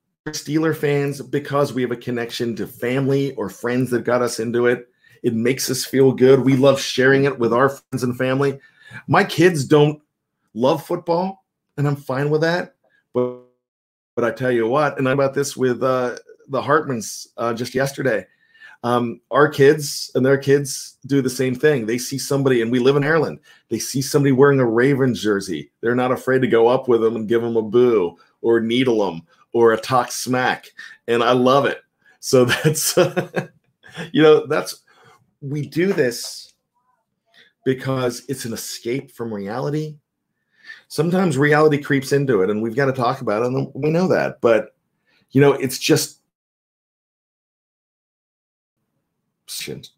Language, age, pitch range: English, 40-59, 125-155 Hz